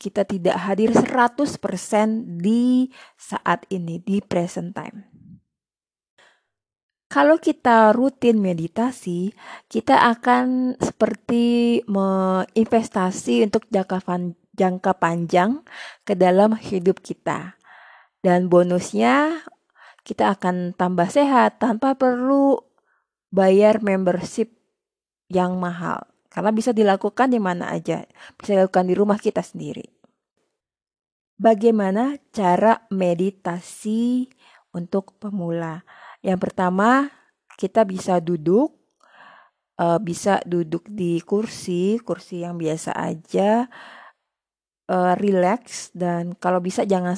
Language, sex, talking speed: Indonesian, female, 95 wpm